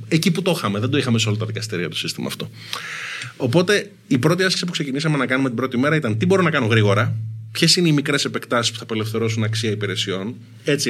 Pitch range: 110-155 Hz